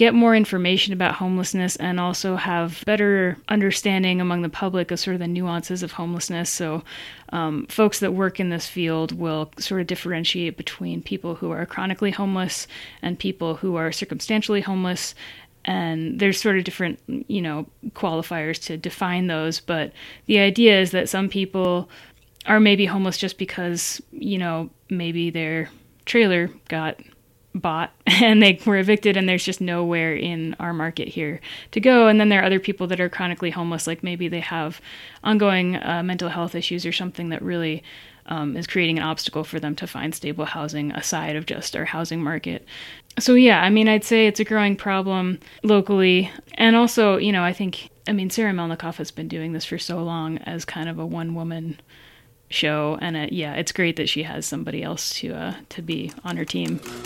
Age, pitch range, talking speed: 30-49, 165-195 Hz, 190 wpm